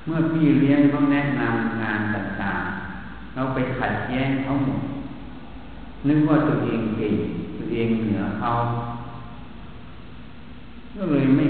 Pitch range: 105-140 Hz